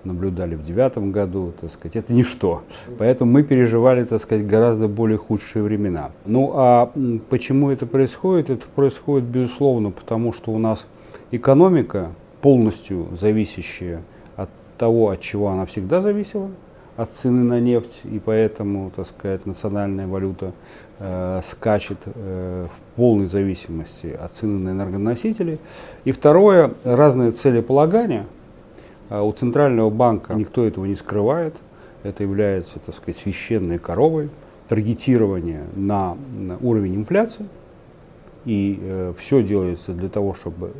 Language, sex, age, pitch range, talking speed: Russian, male, 30-49, 95-125 Hz, 130 wpm